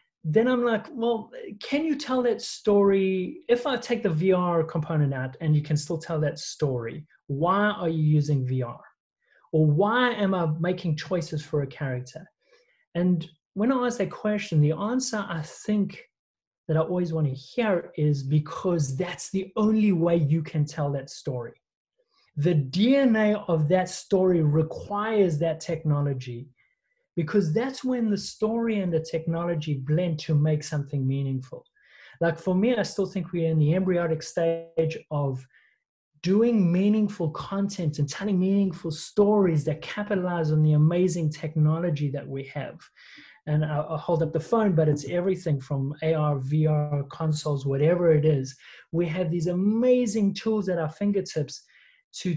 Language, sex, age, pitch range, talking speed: English, male, 30-49, 150-205 Hz, 160 wpm